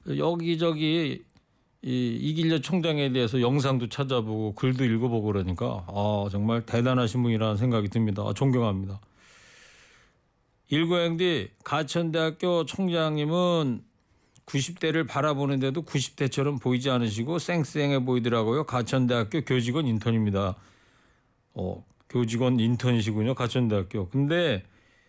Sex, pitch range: male, 115-160 Hz